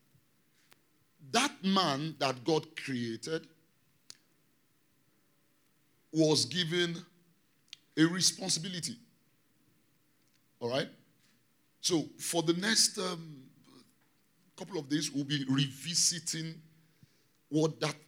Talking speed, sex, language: 80 wpm, male, English